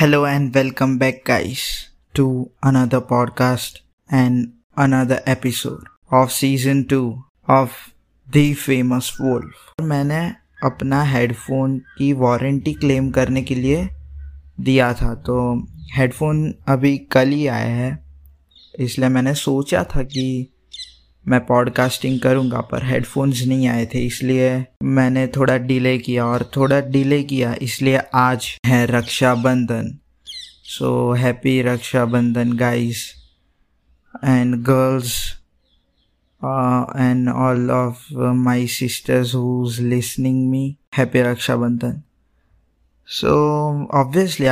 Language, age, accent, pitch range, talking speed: Hindi, 20-39, native, 120-135 Hz, 110 wpm